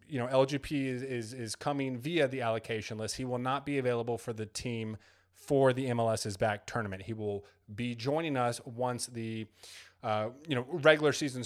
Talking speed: 190 wpm